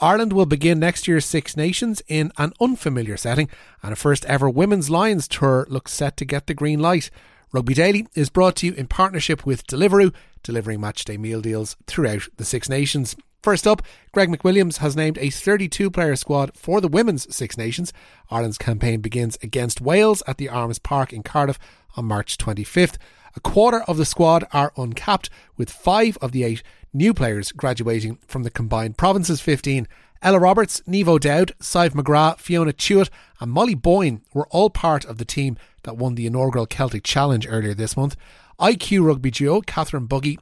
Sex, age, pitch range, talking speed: male, 30-49, 120-175 Hz, 180 wpm